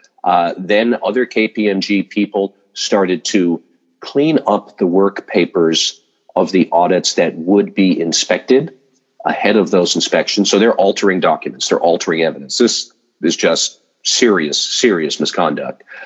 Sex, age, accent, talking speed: male, 40-59, American, 135 wpm